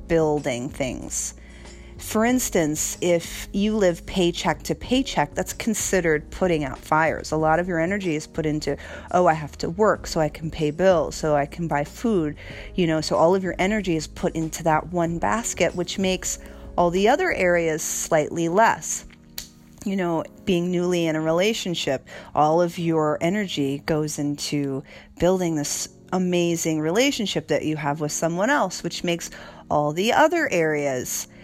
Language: English